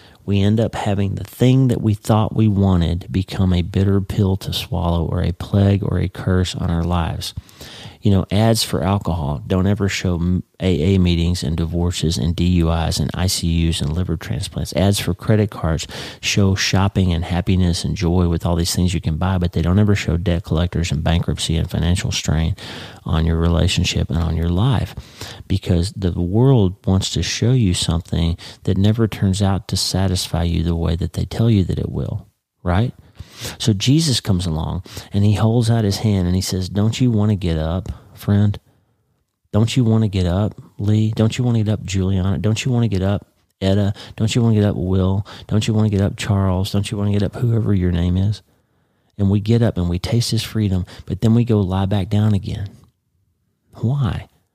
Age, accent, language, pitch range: 40-59, American, English, 90-105 Hz